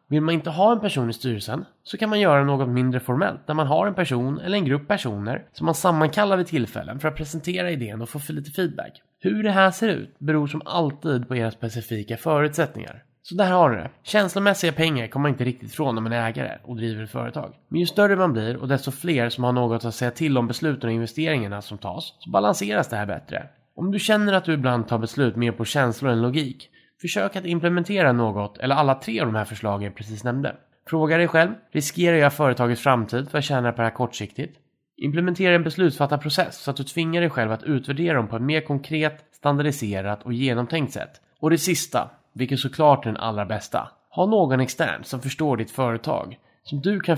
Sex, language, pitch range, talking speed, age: male, Swedish, 120-170 Hz, 225 wpm, 20-39